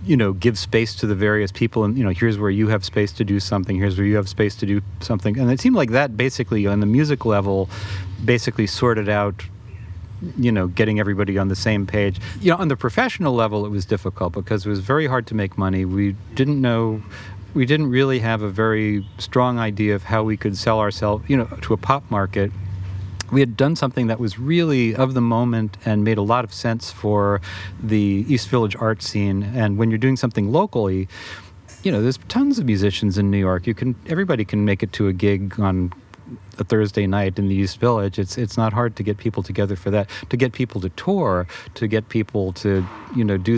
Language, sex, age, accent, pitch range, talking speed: English, male, 40-59, American, 100-115 Hz, 225 wpm